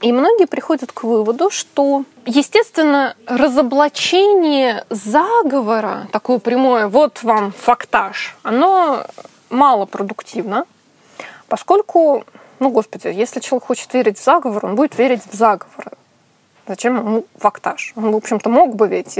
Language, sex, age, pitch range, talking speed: Russian, female, 20-39, 230-300 Hz, 120 wpm